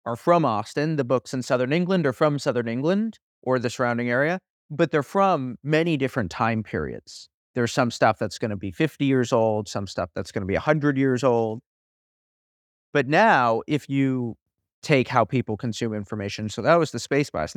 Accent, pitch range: American, 115-155 Hz